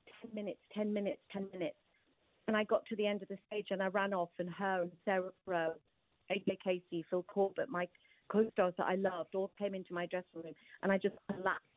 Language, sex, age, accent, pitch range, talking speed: English, female, 40-59, British, 190-230 Hz, 215 wpm